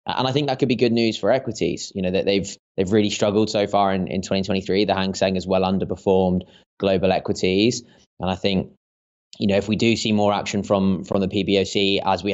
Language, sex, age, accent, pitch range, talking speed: English, male, 20-39, British, 90-100 Hz, 230 wpm